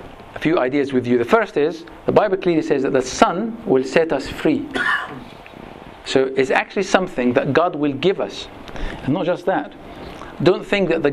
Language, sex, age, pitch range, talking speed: English, male, 50-69, 130-175 Hz, 190 wpm